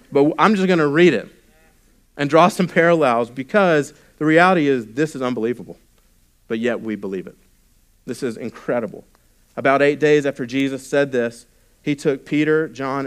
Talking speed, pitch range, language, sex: 170 wpm, 115-150 Hz, English, male